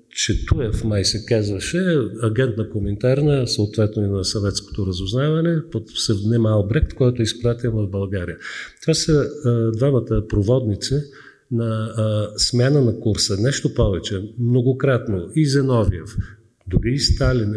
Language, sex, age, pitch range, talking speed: Bulgarian, male, 50-69, 100-130 Hz, 125 wpm